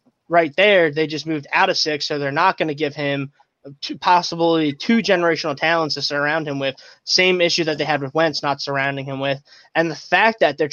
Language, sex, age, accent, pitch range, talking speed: English, male, 20-39, American, 145-170 Hz, 220 wpm